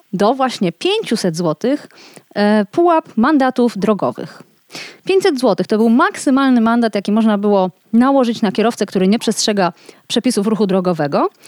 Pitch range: 195-275 Hz